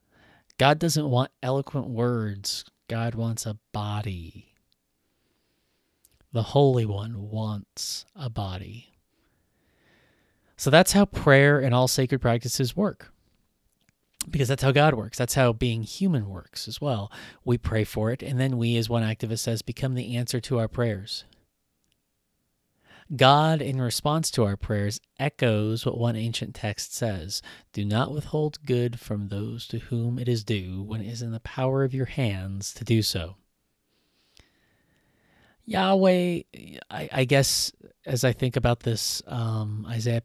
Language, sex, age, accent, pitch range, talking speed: English, male, 30-49, American, 105-130 Hz, 150 wpm